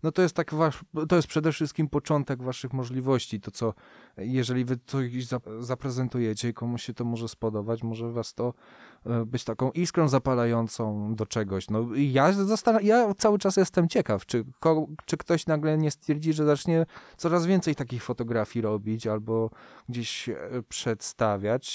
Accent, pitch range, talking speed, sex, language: native, 115-145 Hz, 155 wpm, male, Polish